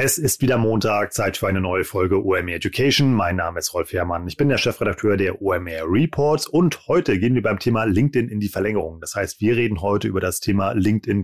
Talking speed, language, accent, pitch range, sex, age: 225 wpm, German, German, 100-120 Hz, male, 30-49